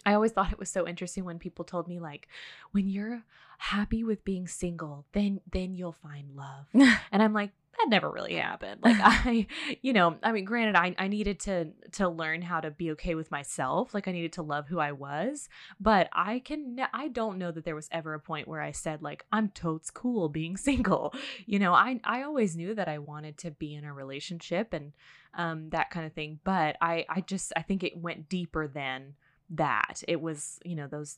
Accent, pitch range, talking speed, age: American, 155-200 Hz, 220 wpm, 20-39